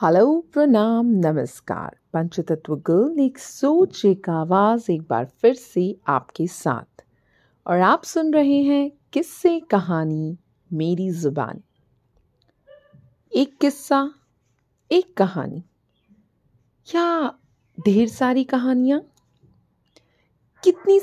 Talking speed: 95 wpm